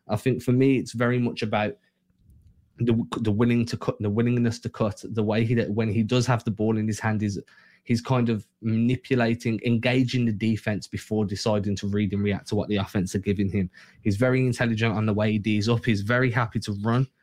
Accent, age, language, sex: British, 20-39, English, male